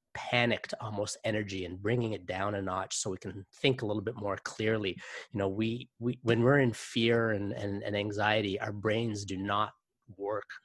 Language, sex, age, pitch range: English, male, 30-49, 100-125 Hz